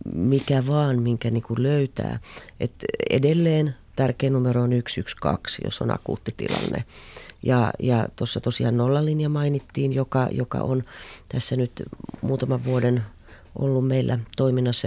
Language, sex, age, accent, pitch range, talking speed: Finnish, female, 30-49, native, 115-135 Hz, 125 wpm